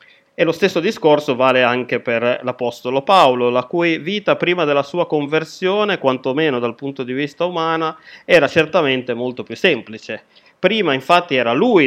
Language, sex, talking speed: Italian, male, 155 wpm